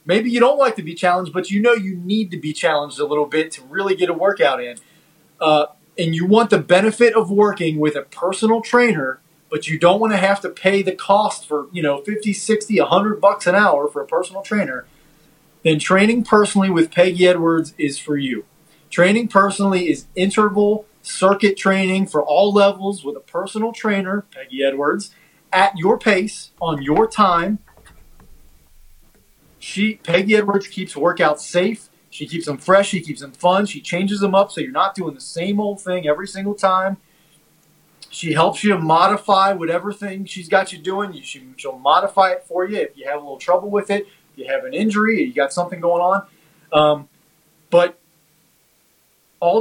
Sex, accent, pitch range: male, American, 155-200 Hz